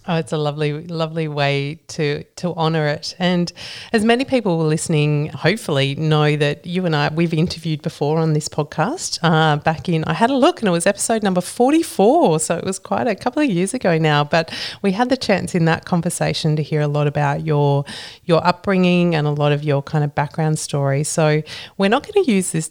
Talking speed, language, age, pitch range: 215 wpm, English, 30-49, 150-180 Hz